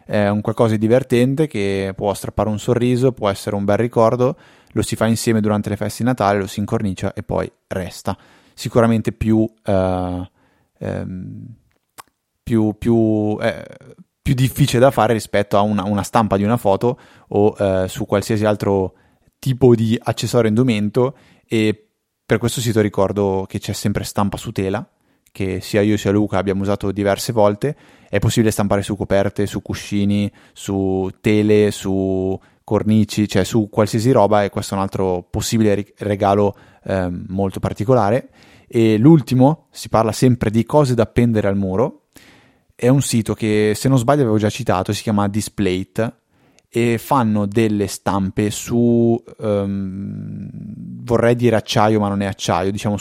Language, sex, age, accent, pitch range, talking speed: Italian, male, 20-39, native, 100-115 Hz, 155 wpm